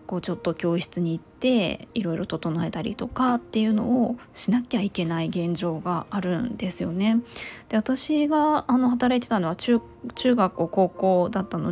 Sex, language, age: female, Japanese, 20-39